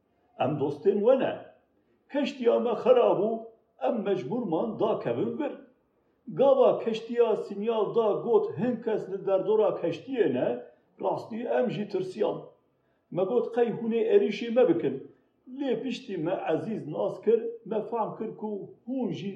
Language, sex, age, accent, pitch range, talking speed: Turkish, male, 50-69, native, 215-270 Hz, 135 wpm